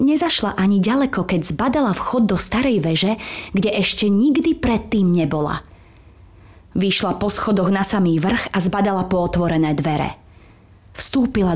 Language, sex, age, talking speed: Slovak, female, 20-39, 135 wpm